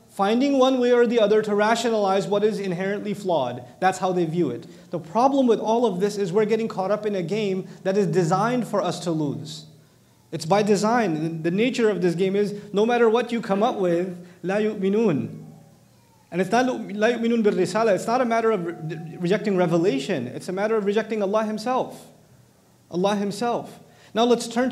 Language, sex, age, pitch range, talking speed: English, male, 30-49, 180-230 Hz, 195 wpm